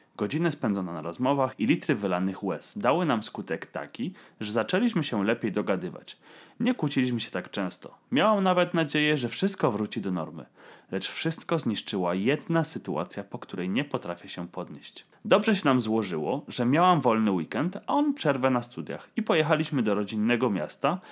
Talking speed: 170 wpm